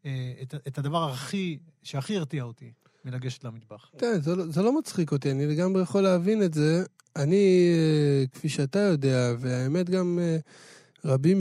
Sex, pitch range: male, 145-195 Hz